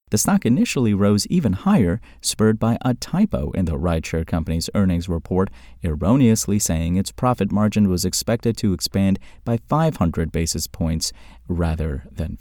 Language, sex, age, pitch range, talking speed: English, male, 30-49, 85-110 Hz, 150 wpm